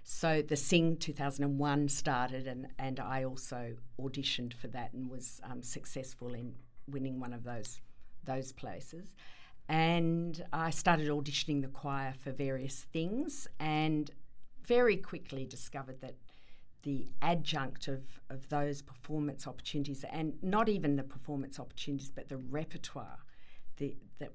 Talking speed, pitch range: 135 wpm, 130-145 Hz